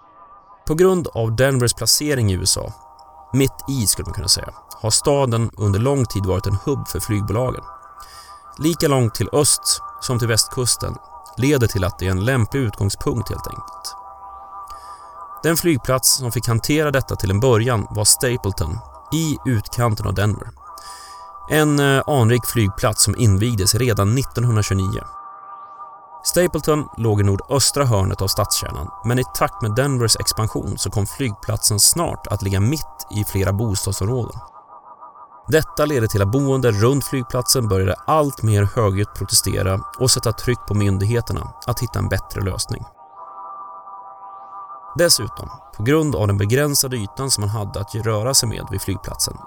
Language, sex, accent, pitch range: Swedish, male, native, 105-150 Hz